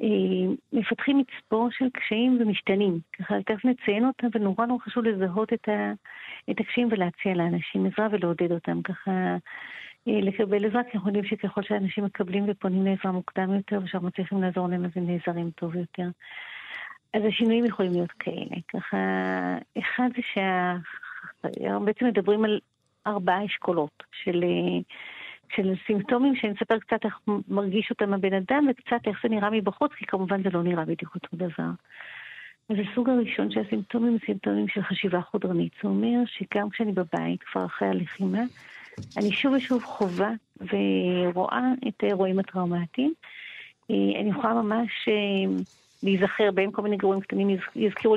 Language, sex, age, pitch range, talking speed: Hebrew, female, 50-69, 180-220 Hz, 145 wpm